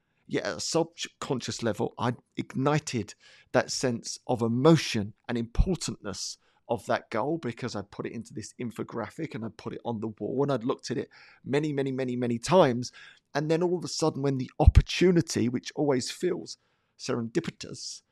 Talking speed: 175 wpm